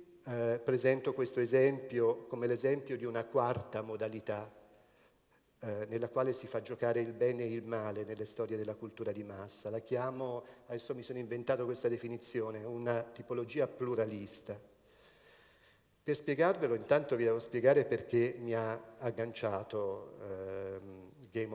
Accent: native